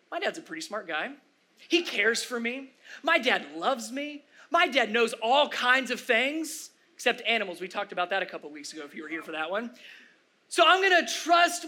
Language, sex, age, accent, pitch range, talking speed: English, male, 30-49, American, 210-280 Hz, 215 wpm